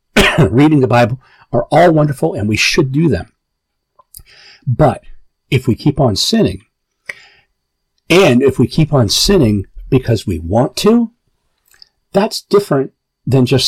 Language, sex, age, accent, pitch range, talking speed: English, male, 50-69, American, 115-160 Hz, 135 wpm